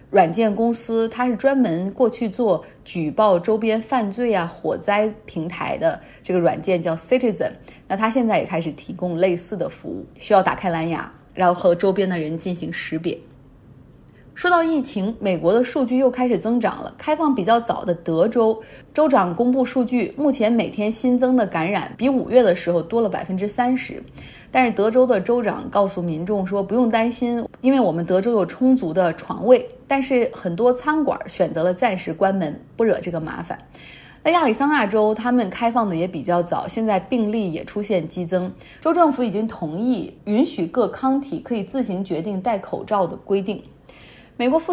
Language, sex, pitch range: Chinese, female, 180-250 Hz